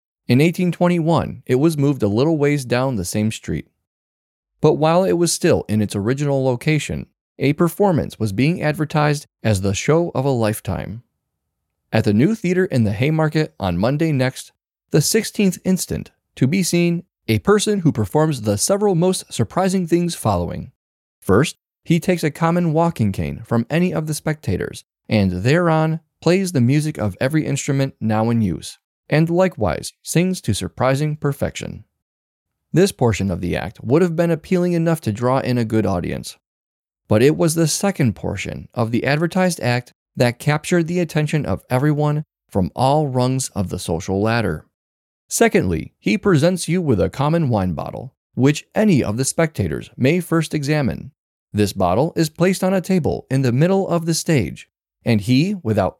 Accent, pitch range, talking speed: American, 110-170 Hz, 170 wpm